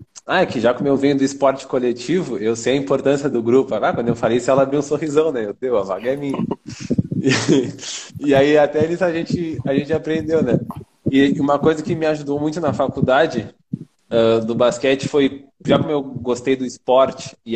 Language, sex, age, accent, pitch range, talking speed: Portuguese, male, 20-39, Brazilian, 135-160 Hz, 215 wpm